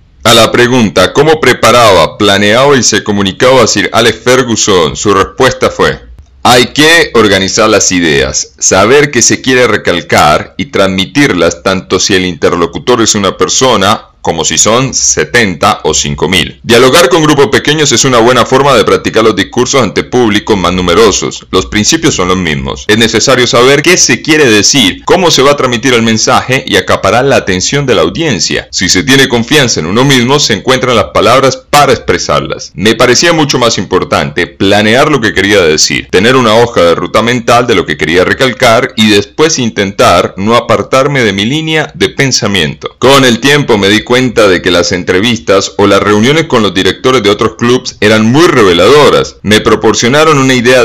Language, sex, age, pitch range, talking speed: English, male, 40-59, 100-130 Hz, 180 wpm